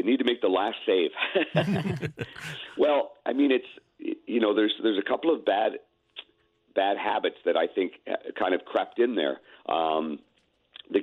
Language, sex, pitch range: English, male, 325-450 Hz